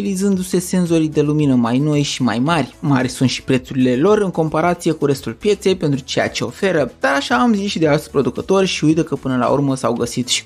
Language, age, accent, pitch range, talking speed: Romanian, 20-39, native, 130-175 Hz, 230 wpm